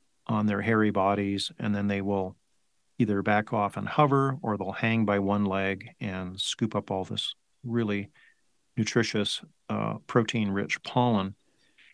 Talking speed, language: 145 wpm, English